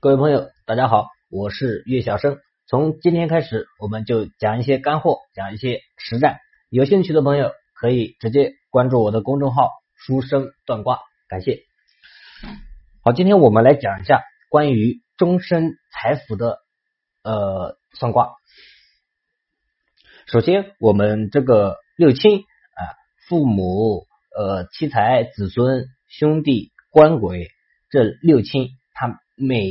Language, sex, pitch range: Chinese, male, 105-150 Hz